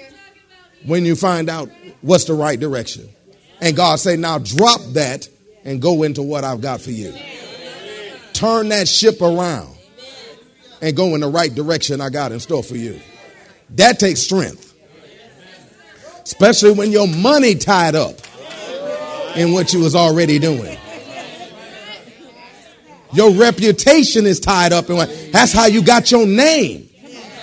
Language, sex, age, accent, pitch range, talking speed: English, male, 40-59, American, 165-265 Hz, 140 wpm